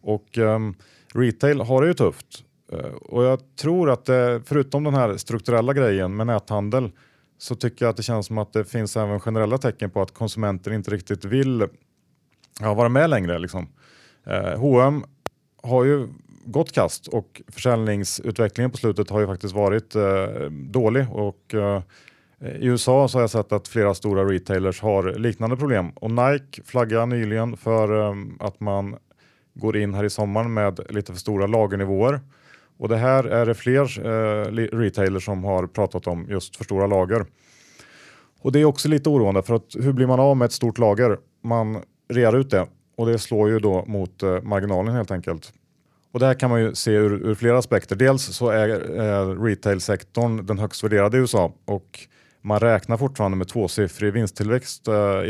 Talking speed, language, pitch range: 185 wpm, Swedish, 100-125 Hz